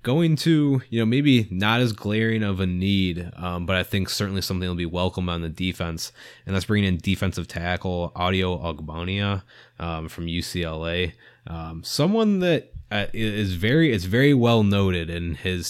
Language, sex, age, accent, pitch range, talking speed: English, male, 20-39, American, 85-105 Hz, 180 wpm